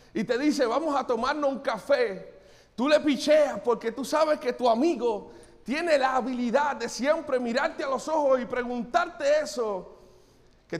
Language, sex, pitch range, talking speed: Spanish, male, 230-290 Hz, 165 wpm